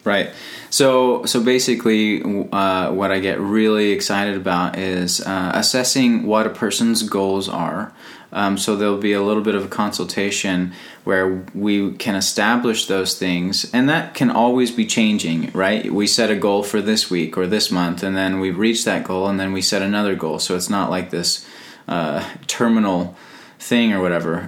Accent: American